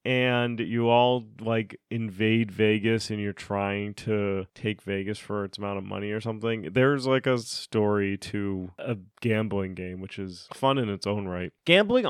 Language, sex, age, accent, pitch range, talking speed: English, male, 30-49, American, 105-140 Hz, 175 wpm